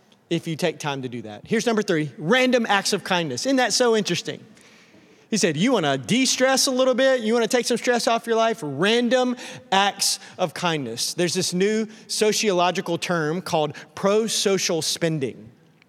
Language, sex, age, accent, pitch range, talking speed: English, male, 30-49, American, 180-235 Hz, 175 wpm